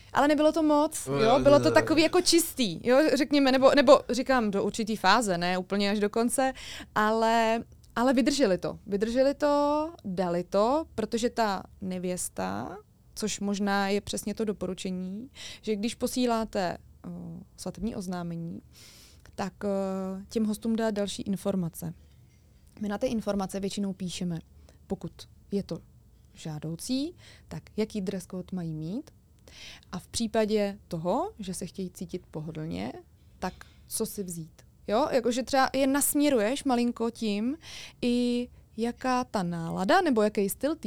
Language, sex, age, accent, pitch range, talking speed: Czech, female, 20-39, native, 185-240 Hz, 135 wpm